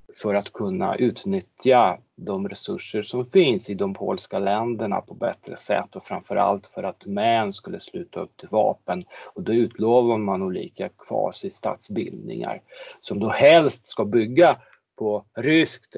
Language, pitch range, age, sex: Swedish, 105-135 Hz, 30-49, male